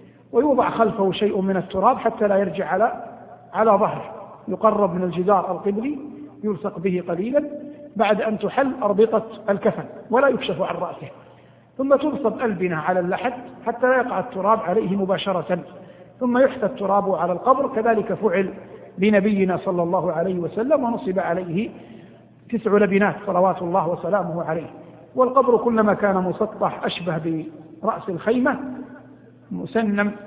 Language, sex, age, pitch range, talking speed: Arabic, male, 50-69, 185-240 Hz, 130 wpm